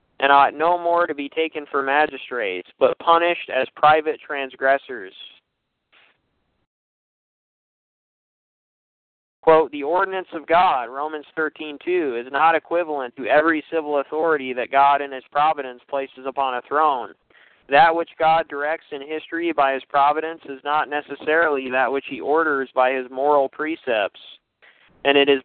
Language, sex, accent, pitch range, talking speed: English, male, American, 135-160 Hz, 145 wpm